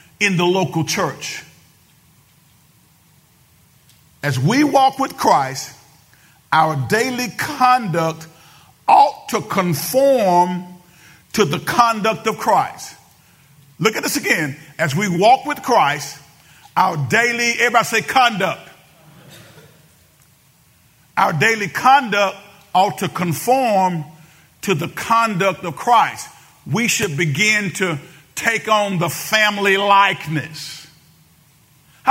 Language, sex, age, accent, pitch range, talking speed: English, male, 50-69, American, 155-245 Hz, 105 wpm